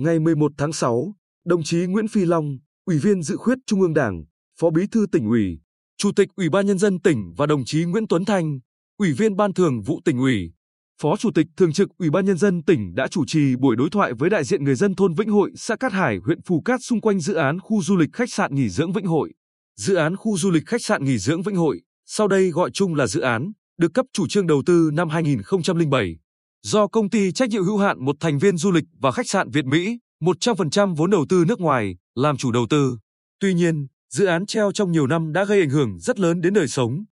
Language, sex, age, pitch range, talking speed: Vietnamese, male, 20-39, 150-200 Hz, 245 wpm